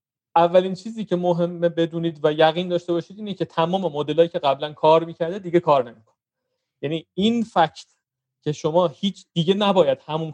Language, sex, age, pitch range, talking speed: Persian, male, 30-49, 140-185 Hz, 170 wpm